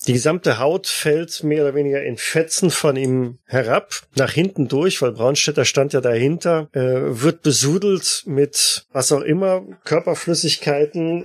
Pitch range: 125-160 Hz